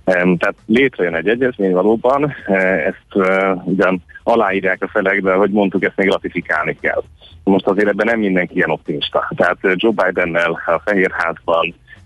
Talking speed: 150 wpm